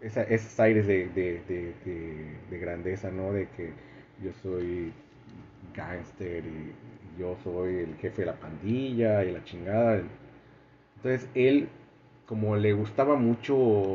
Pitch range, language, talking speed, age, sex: 95-130 Hz, Spanish, 135 wpm, 30-49, male